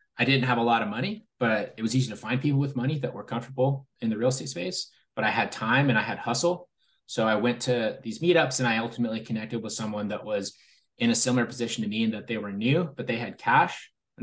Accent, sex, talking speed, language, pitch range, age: American, male, 260 wpm, English, 110-135 Hz, 20-39